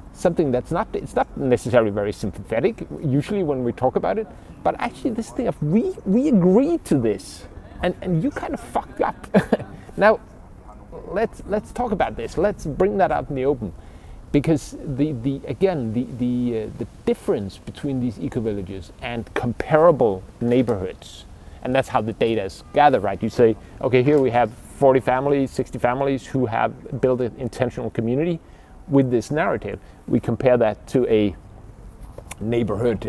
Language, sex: Danish, male